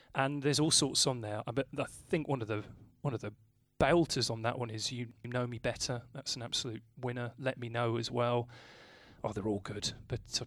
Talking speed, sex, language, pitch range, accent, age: 225 wpm, male, English, 115-140 Hz, British, 30-49